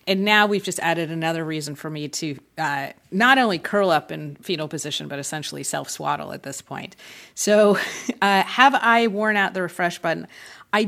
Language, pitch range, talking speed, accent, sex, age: English, 155-200 Hz, 190 wpm, American, female, 30-49